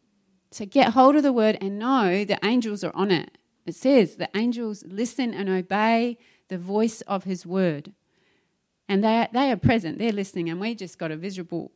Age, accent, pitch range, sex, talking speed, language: 30-49, Australian, 180-225 Hz, female, 200 wpm, English